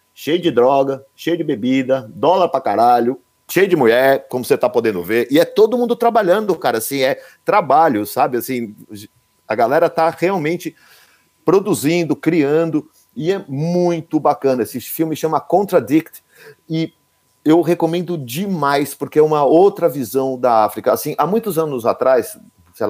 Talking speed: 155 wpm